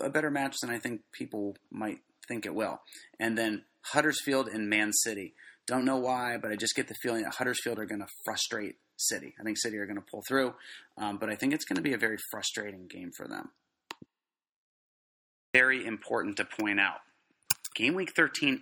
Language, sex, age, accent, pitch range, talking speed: English, male, 30-49, American, 105-135 Hz, 205 wpm